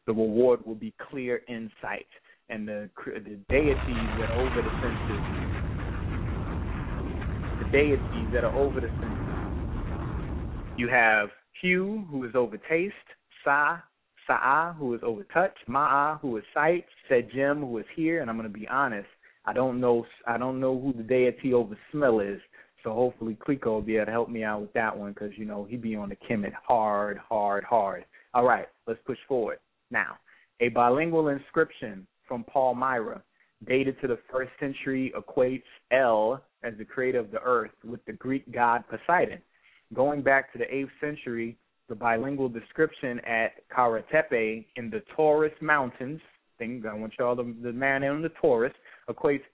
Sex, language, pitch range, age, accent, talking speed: male, English, 110-135 Hz, 30-49, American, 165 wpm